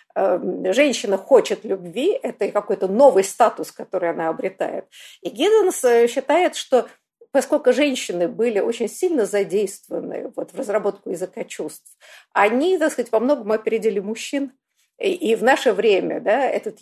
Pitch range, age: 195-265 Hz, 50-69